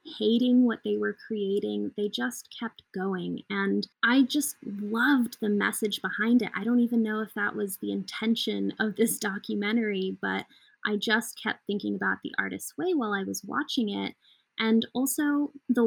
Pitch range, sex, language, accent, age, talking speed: 190-225 Hz, female, English, American, 20-39, 175 wpm